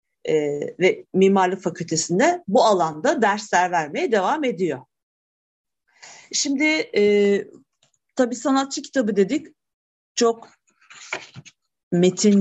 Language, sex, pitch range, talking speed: Turkish, female, 195-255 Hz, 75 wpm